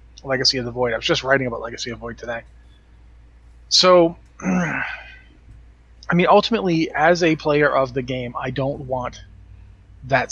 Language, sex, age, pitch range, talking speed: English, male, 30-49, 125-165 Hz, 165 wpm